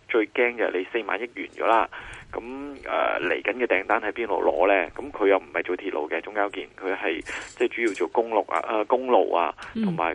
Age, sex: 20-39, male